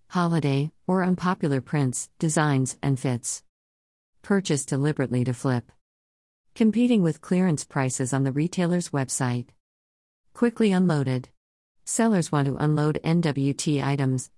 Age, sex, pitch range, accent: 50-69, female, 130-165 Hz, American